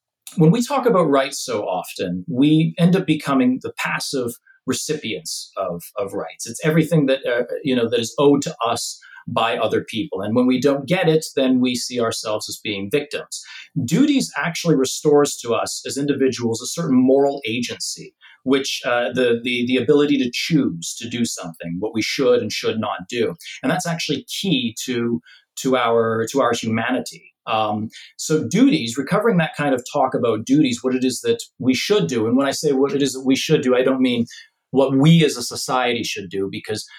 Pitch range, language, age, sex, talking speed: 120-155 Hz, English, 30-49, male, 200 wpm